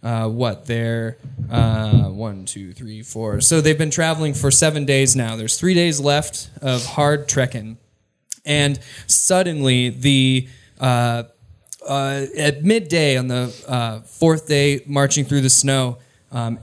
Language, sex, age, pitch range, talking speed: English, male, 20-39, 125-150 Hz, 145 wpm